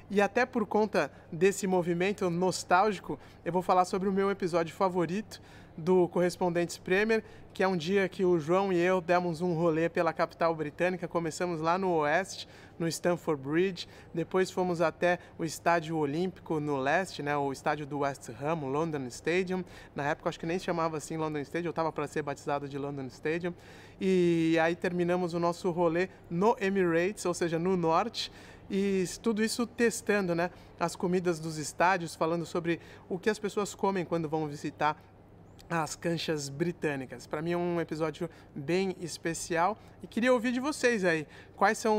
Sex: male